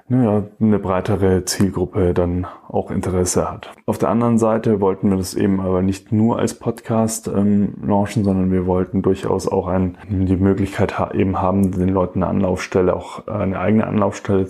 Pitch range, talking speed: 90-105 Hz, 170 wpm